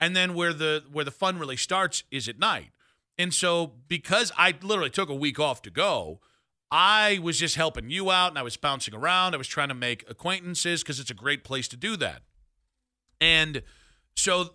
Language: English